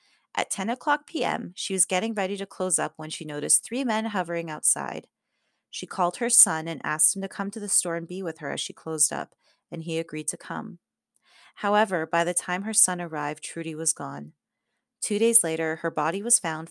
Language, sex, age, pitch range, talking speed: English, female, 30-49, 160-215 Hz, 215 wpm